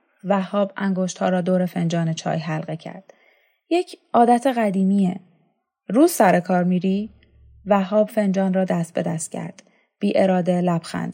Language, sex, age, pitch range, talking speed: Persian, female, 30-49, 185-225 Hz, 140 wpm